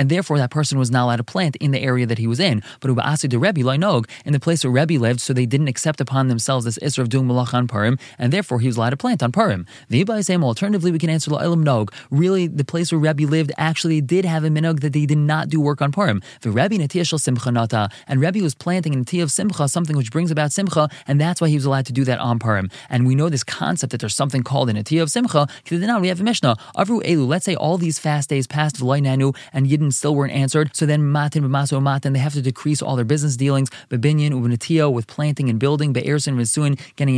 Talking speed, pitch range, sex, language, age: 230 wpm, 130-160 Hz, male, English, 20-39